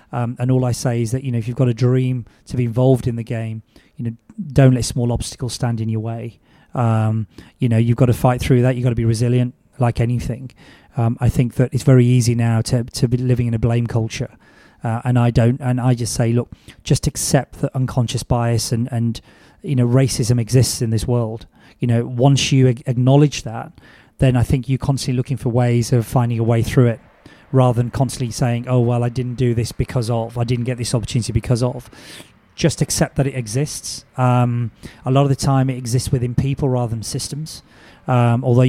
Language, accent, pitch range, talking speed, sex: English, British, 120-130 Hz, 225 wpm, male